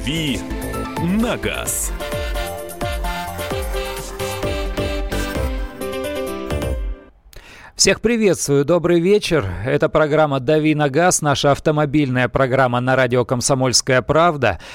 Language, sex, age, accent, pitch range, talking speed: Russian, male, 40-59, native, 130-175 Hz, 75 wpm